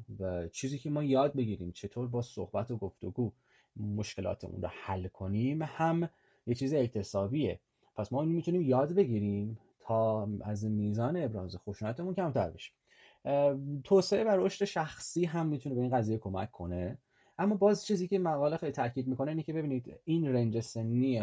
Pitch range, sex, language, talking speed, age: 100-145 Hz, male, Persian, 160 wpm, 30-49